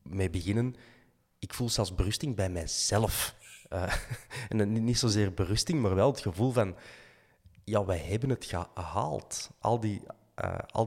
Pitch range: 90-115 Hz